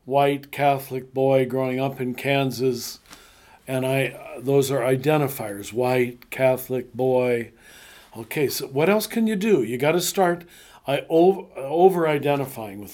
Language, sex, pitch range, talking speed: English, male, 125-150 Hz, 140 wpm